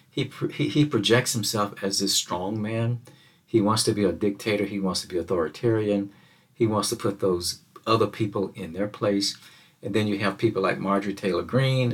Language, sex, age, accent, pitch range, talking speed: English, male, 50-69, American, 105-140 Hz, 195 wpm